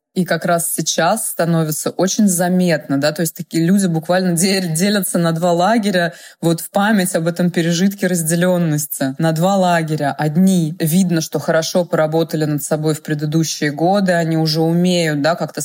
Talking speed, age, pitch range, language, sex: 160 wpm, 20-39, 155-175 Hz, Russian, female